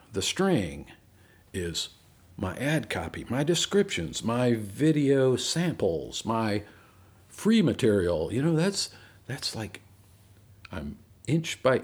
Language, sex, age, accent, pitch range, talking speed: English, male, 50-69, American, 95-125 Hz, 110 wpm